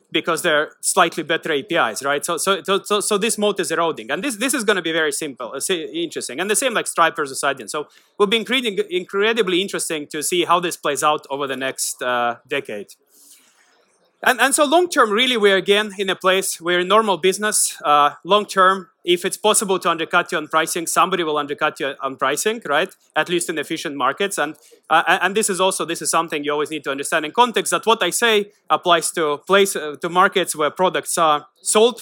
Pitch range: 155-200 Hz